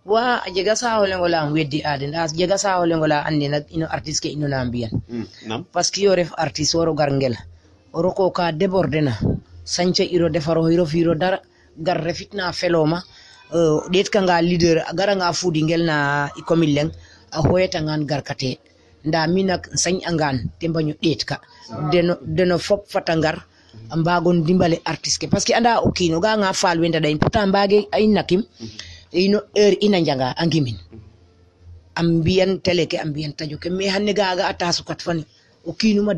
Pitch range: 150-185 Hz